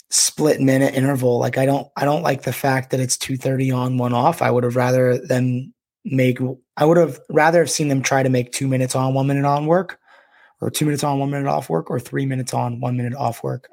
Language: English